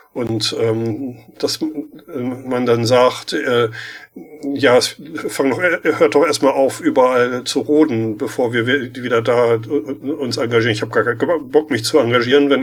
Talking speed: 155 wpm